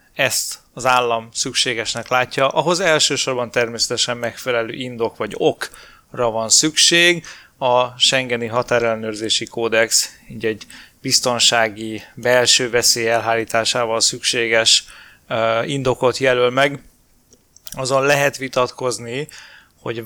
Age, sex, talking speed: 20-39, male, 95 wpm